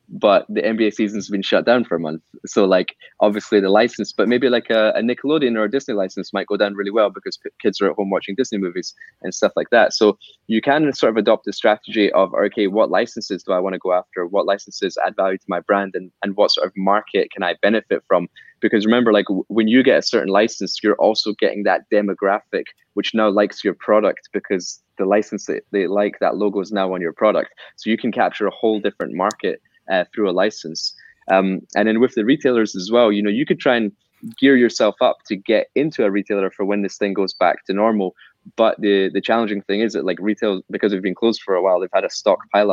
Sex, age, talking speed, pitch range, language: male, 20-39, 240 wpm, 95-115 Hz, English